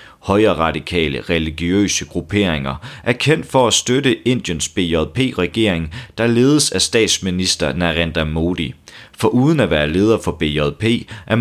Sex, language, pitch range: male, Danish, 85-110 Hz